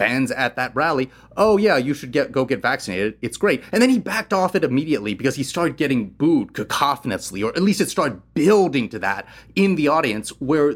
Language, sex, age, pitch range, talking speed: English, male, 30-49, 115-155 Hz, 215 wpm